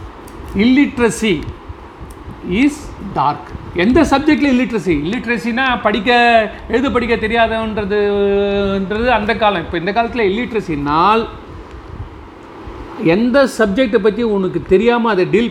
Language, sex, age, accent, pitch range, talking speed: Tamil, male, 40-59, native, 175-230 Hz, 95 wpm